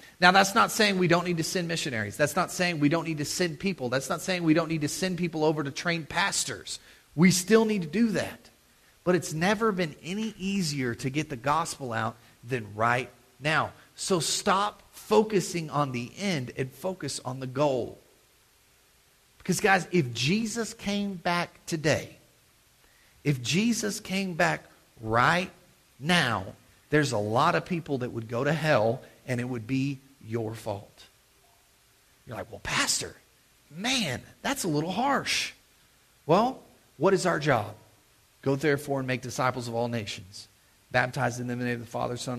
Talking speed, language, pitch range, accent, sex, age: 175 wpm, English, 125-180 Hz, American, male, 40-59